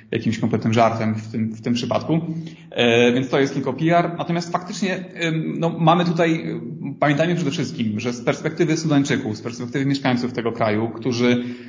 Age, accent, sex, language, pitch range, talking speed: 30-49, native, male, Polish, 120-145 Hz, 170 wpm